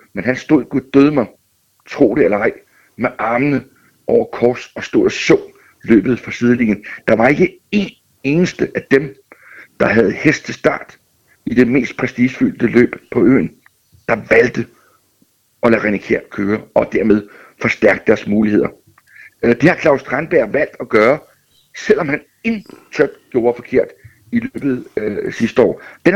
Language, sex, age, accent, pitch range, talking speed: Danish, male, 60-79, native, 130-170 Hz, 150 wpm